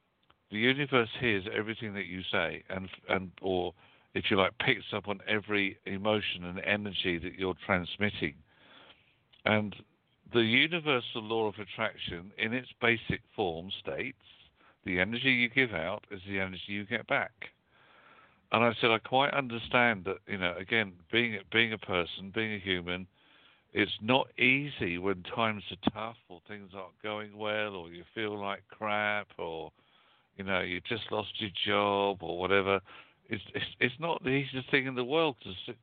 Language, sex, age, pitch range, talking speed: English, male, 60-79, 95-120 Hz, 170 wpm